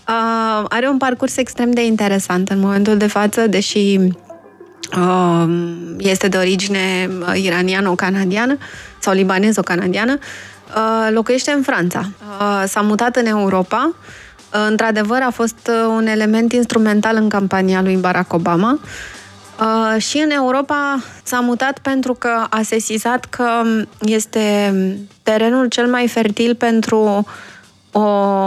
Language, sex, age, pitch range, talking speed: Romanian, female, 20-39, 195-230 Hz, 130 wpm